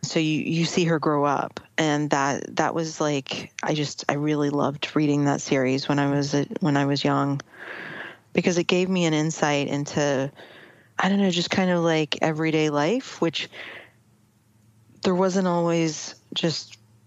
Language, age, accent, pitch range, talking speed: English, 40-59, American, 135-160 Hz, 170 wpm